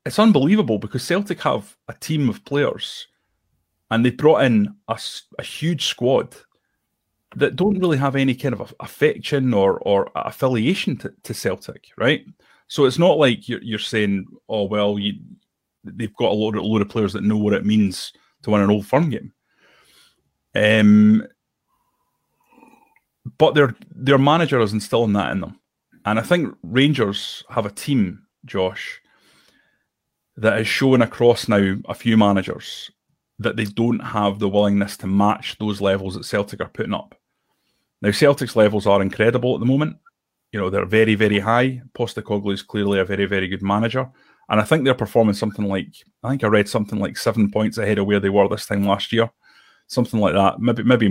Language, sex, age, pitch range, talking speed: English, male, 30-49, 100-125 Hz, 180 wpm